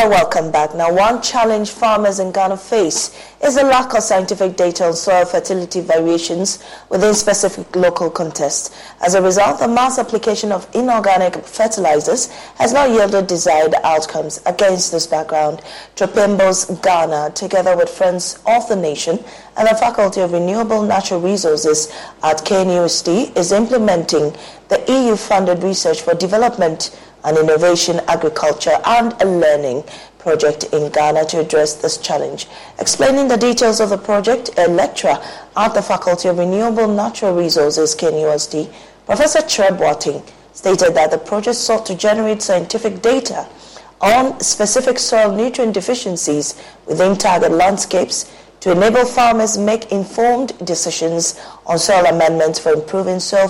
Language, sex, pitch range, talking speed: English, female, 165-220 Hz, 140 wpm